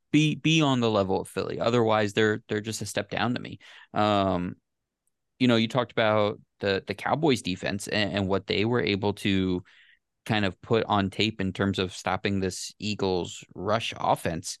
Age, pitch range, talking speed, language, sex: 20-39, 100-120 Hz, 190 wpm, English, male